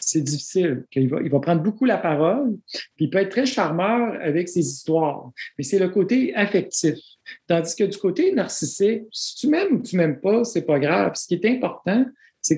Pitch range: 155-210 Hz